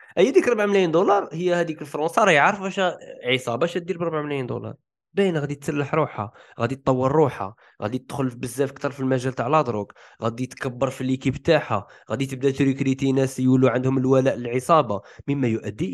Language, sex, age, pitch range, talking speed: Arabic, male, 20-39, 120-165 Hz, 175 wpm